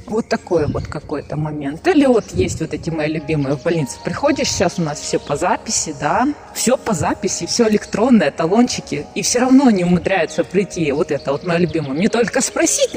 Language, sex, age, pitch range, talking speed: Russian, female, 20-39, 155-200 Hz, 195 wpm